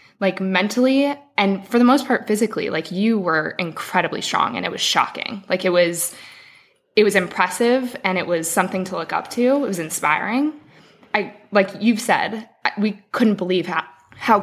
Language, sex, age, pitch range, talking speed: English, female, 20-39, 175-215 Hz, 180 wpm